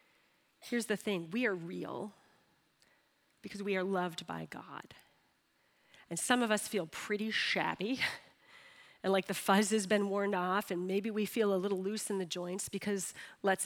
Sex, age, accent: female, 40-59, American